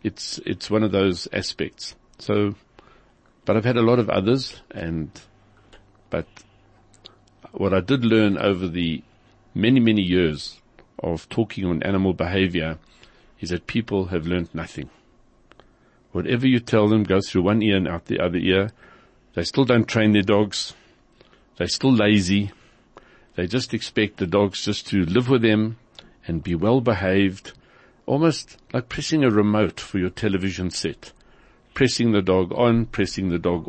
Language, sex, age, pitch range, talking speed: English, male, 60-79, 90-115 Hz, 155 wpm